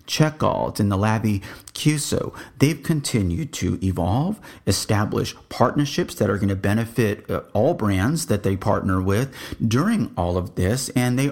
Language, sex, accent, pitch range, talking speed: English, male, American, 95-135 Hz, 150 wpm